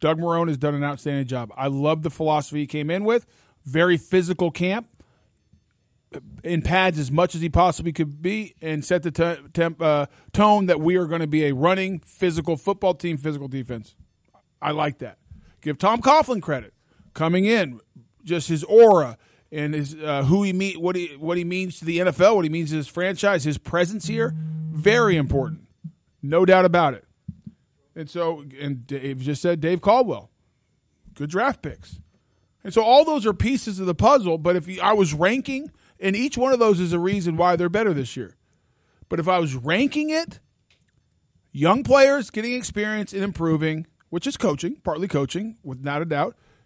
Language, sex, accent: English, male, American